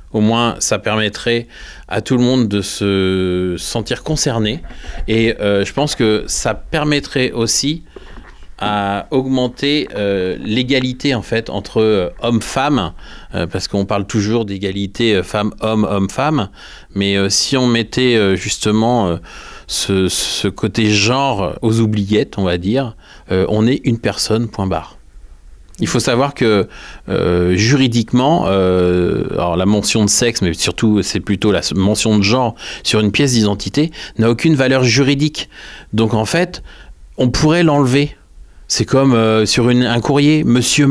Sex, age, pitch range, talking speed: male, 40-59, 100-135 Hz, 150 wpm